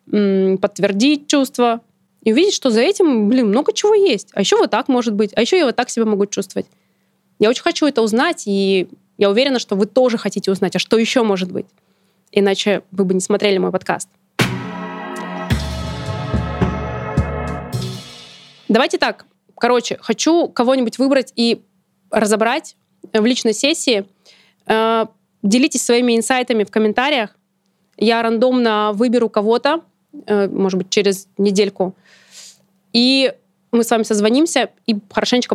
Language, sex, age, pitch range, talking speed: Russian, female, 20-39, 195-245 Hz, 135 wpm